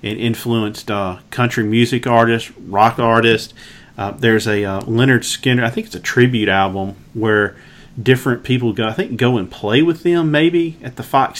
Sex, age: male, 40-59